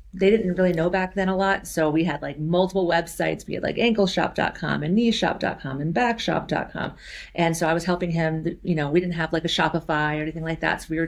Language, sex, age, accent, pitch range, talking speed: English, female, 40-59, American, 160-185 Hz, 240 wpm